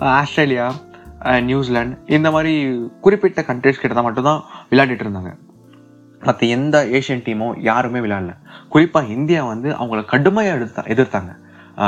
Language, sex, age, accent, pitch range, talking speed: Tamil, male, 20-39, native, 110-150 Hz, 120 wpm